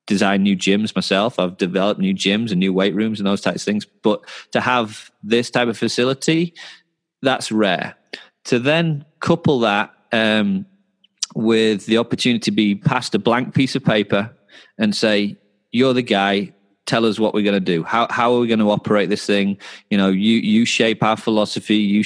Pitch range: 100-130 Hz